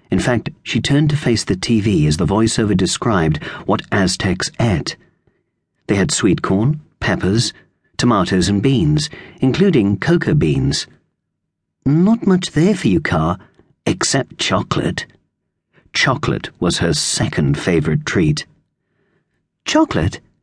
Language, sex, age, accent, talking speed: English, male, 40-59, British, 120 wpm